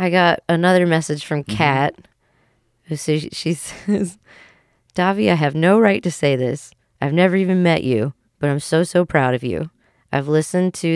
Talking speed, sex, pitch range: 180 wpm, female, 130-160 Hz